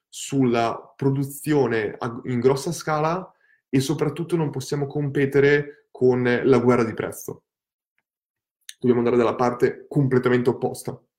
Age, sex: 20-39, male